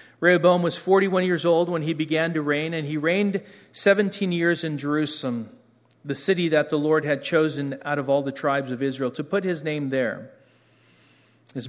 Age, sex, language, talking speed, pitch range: 40-59, male, English, 190 wpm, 125-150 Hz